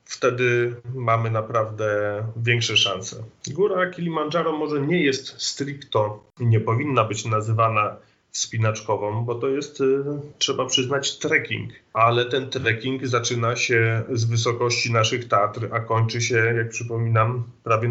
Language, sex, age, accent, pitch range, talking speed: Polish, male, 30-49, native, 115-130 Hz, 125 wpm